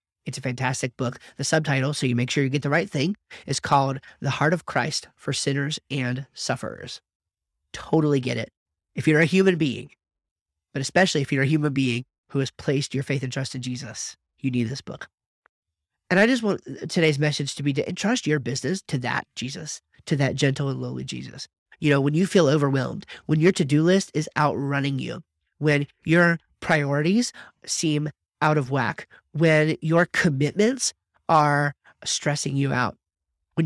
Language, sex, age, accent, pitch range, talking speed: English, male, 30-49, American, 130-160 Hz, 185 wpm